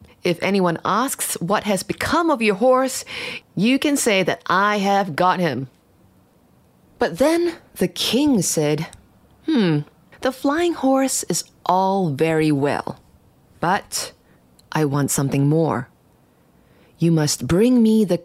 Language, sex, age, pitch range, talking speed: English, female, 30-49, 155-215 Hz, 130 wpm